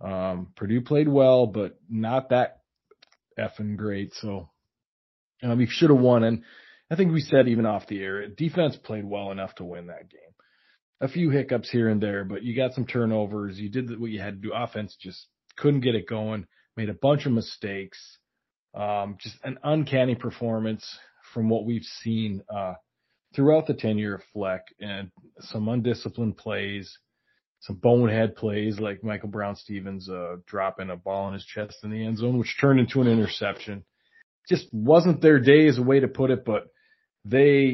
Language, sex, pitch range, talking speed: English, male, 100-125 Hz, 185 wpm